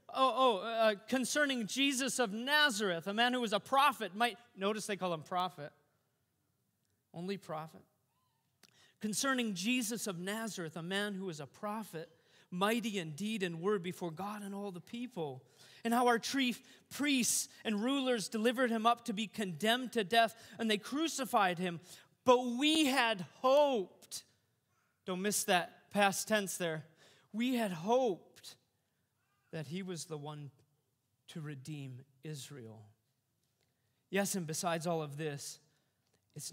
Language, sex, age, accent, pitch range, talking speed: English, male, 30-49, American, 140-220 Hz, 145 wpm